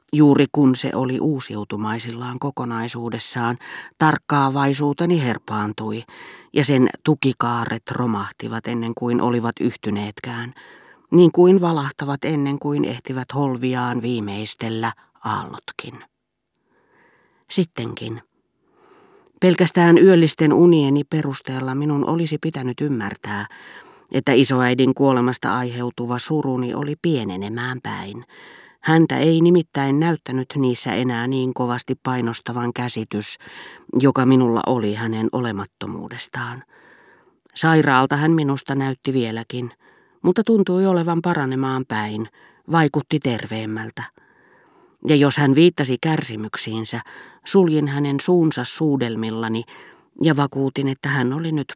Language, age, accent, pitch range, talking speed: Finnish, 30-49, native, 120-155 Hz, 95 wpm